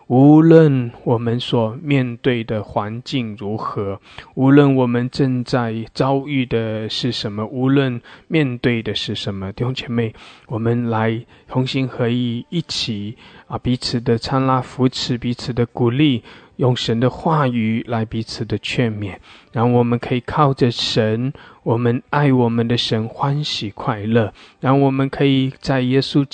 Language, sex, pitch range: English, male, 110-130 Hz